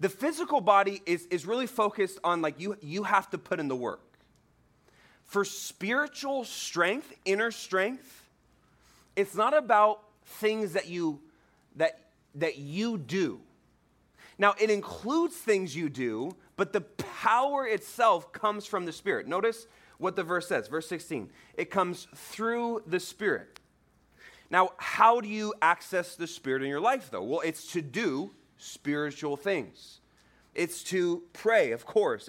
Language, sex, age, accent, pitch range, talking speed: English, male, 30-49, American, 165-225 Hz, 150 wpm